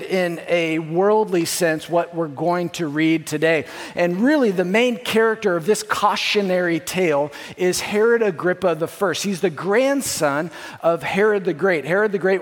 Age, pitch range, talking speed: 50-69, 160-200 Hz, 160 wpm